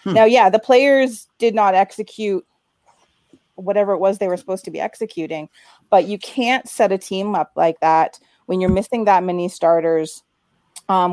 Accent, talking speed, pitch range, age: American, 175 wpm, 170-215 Hz, 30-49